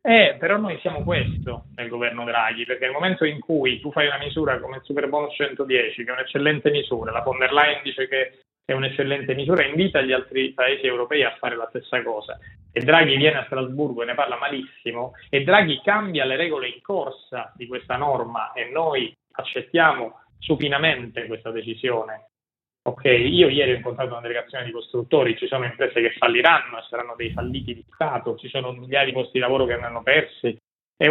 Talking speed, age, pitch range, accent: 190 wpm, 30-49, 120-150 Hz, native